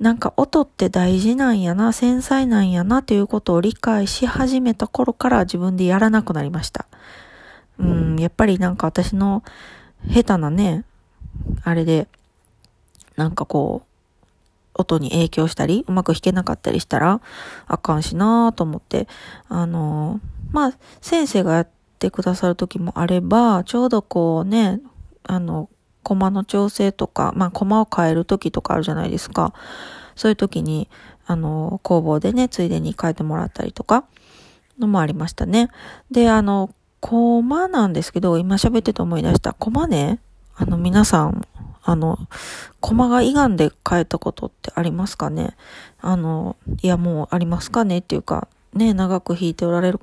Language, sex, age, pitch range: Japanese, female, 20-39, 170-220 Hz